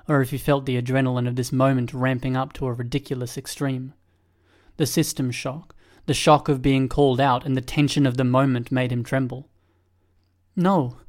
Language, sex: English, male